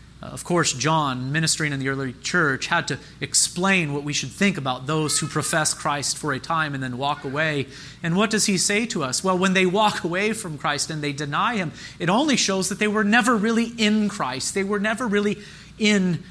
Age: 30-49